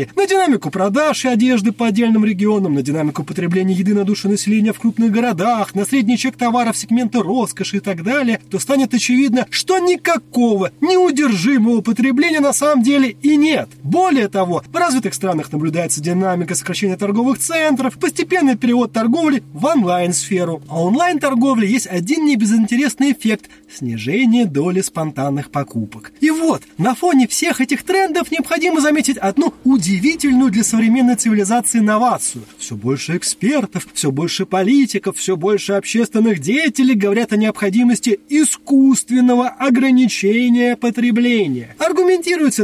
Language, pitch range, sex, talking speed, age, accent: Russian, 185-265 Hz, male, 140 wpm, 20-39, native